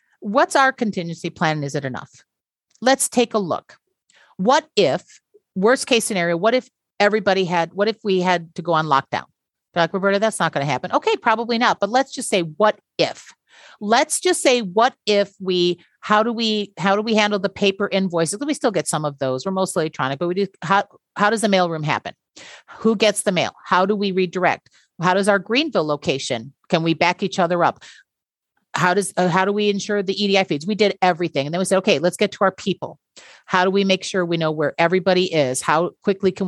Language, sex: English, female